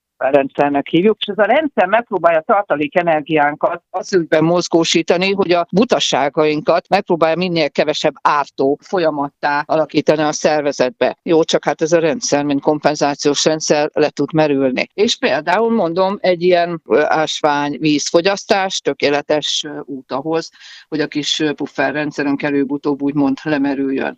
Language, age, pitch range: Hungarian, 50-69, 150-180 Hz